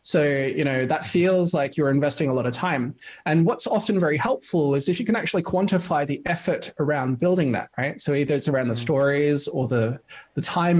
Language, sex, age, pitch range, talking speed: German, male, 20-39, 140-170 Hz, 215 wpm